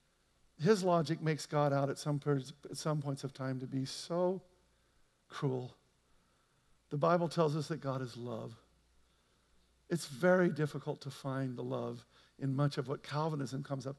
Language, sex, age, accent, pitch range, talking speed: English, male, 50-69, American, 130-155 Hz, 165 wpm